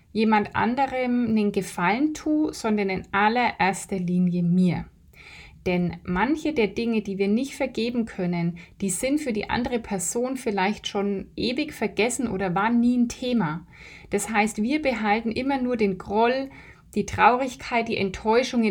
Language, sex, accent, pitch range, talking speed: German, female, German, 195-245 Hz, 150 wpm